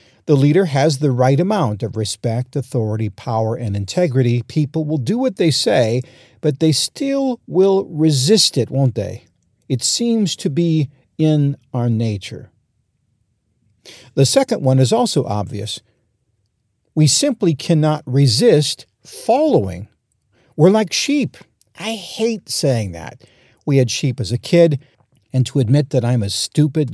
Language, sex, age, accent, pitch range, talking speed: English, male, 50-69, American, 125-175 Hz, 145 wpm